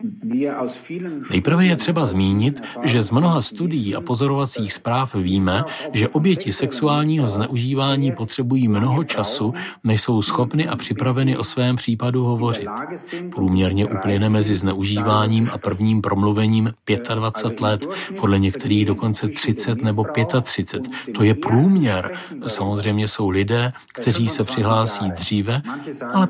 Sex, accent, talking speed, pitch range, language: male, native, 125 wpm, 105-135 Hz, Czech